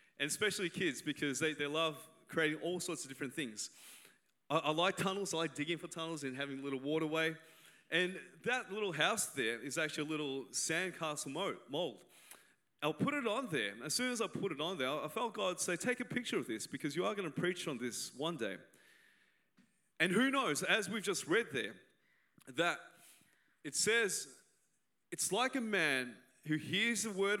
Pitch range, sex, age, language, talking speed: 155-205 Hz, male, 30-49, English, 195 wpm